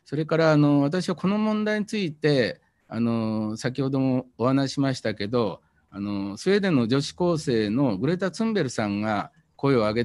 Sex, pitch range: male, 105-155 Hz